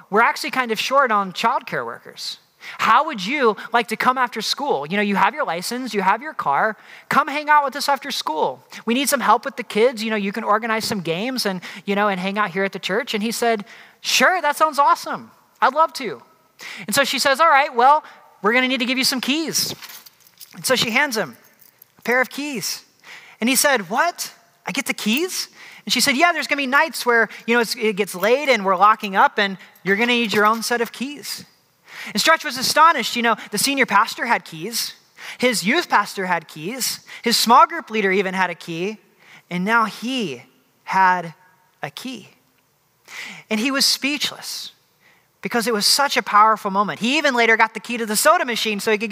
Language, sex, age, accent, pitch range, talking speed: English, male, 30-49, American, 205-270 Hz, 225 wpm